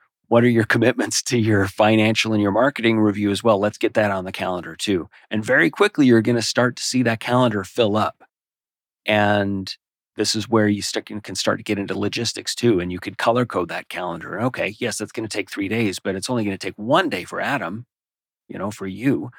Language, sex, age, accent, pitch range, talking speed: English, male, 40-59, American, 95-115 Hz, 230 wpm